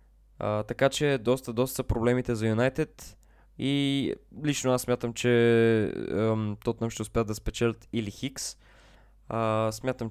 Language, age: Bulgarian, 20-39